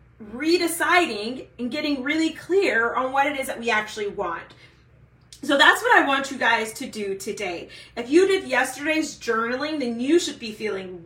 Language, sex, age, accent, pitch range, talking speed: English, female, 30-49, American, 235-310 Hz, 180 wpm